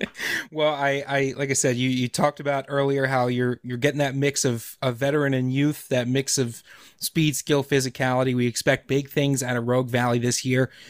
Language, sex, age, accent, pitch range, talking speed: English, male, 30-49, American, 125-150 Hz, 210 wpm